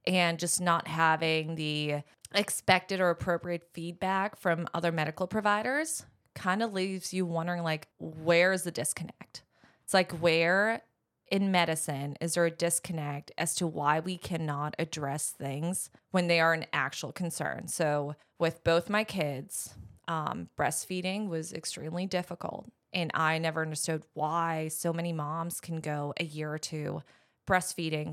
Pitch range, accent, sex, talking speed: 155-185 Hz, American, female, 150 wpm